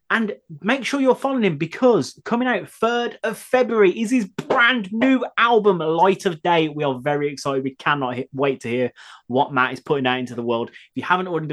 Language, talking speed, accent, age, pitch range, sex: English, 215 wpm, British, 20-39, 135-225 Hz, male